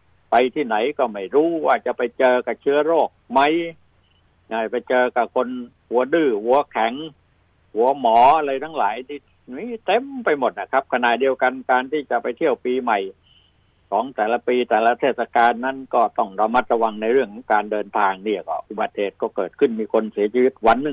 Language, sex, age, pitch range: Thai, male, 60-79, 105-130 Hz